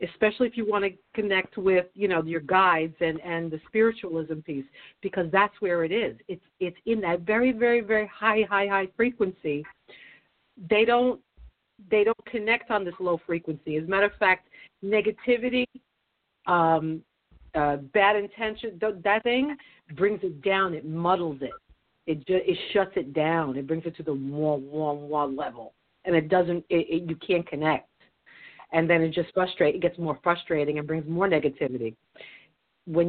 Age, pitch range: 50-69, 160-200 Hz